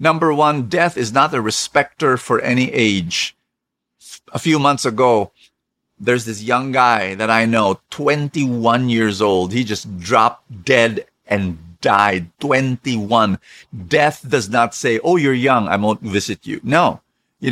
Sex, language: male, English